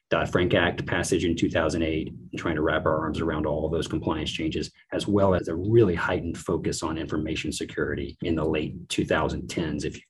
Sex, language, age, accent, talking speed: male, English, 30-49, American, 200 wpm